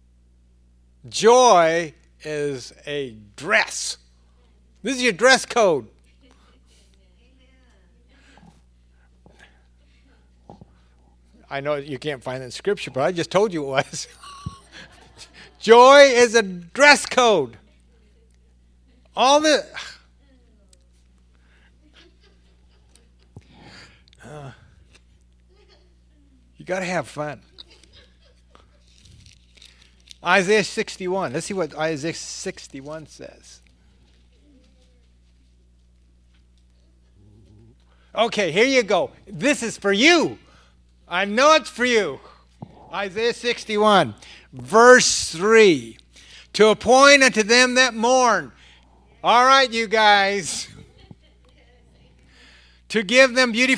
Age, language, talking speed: 60-79, English, 85 wpm